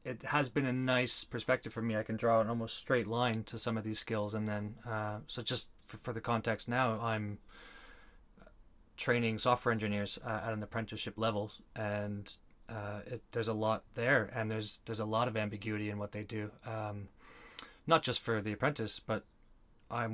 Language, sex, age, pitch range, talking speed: English, male, 30-49, 105-125 Hz, 195 wpm